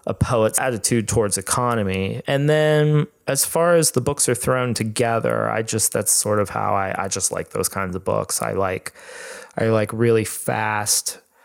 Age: 20-39